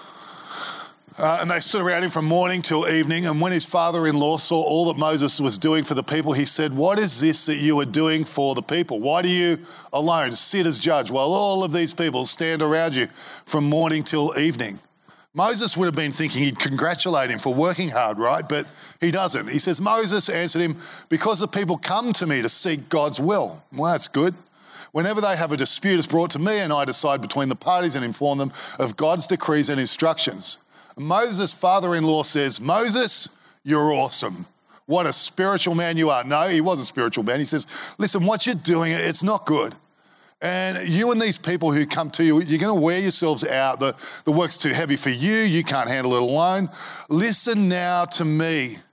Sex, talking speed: male, 205 wpm